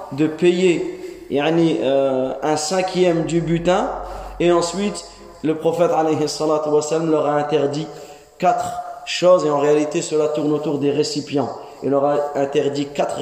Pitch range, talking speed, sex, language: 145-175 Hz, 140 wpm, male, French